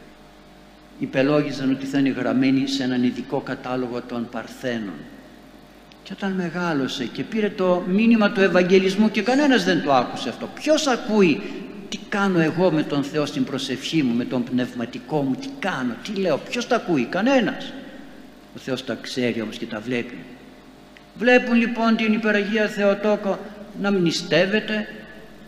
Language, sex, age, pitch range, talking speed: Greek, male, 60-79, 145-235 Hz, 150 wpm